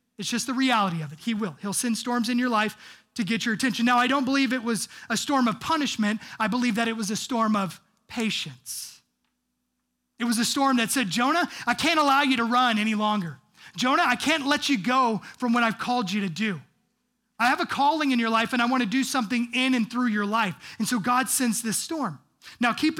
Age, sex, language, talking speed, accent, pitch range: 30-49, male, English, 235 wpm, American, 195-245 Hz